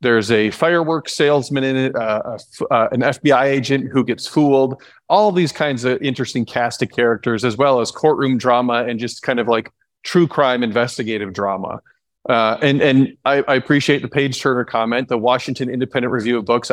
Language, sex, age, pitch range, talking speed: English, male, 30-49, 120-145 Hz, 190 wpm